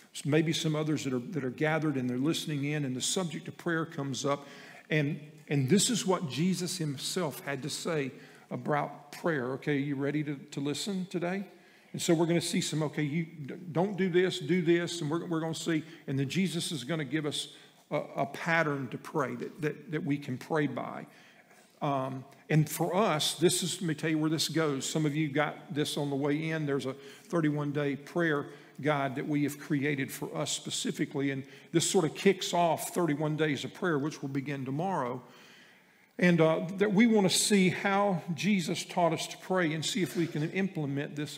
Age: 50-69